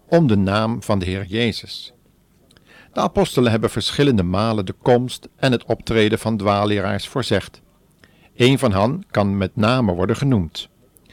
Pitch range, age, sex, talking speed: 105-130 Hz, 50-69, male, 150 wpm